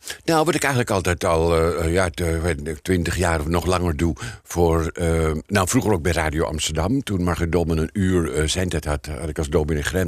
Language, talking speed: Dutch, 200 wpm